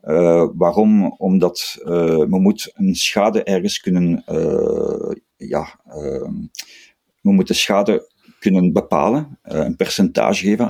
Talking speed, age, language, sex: 125 wpm, 50-69, Dutch, male